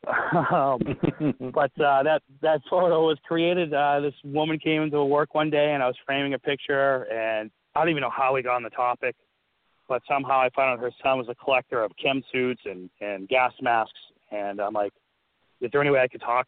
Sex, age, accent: male, 30-49, American